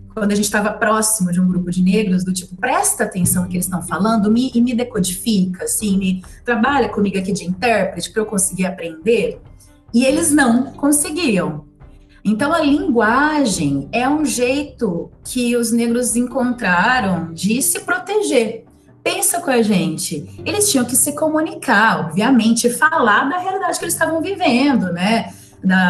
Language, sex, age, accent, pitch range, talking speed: Portuguese, female, 30-49, Brazilian, 180-245 Hz, 160 wpm